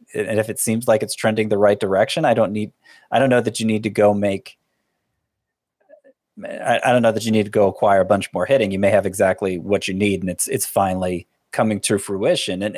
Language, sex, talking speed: English, male, 235 wpm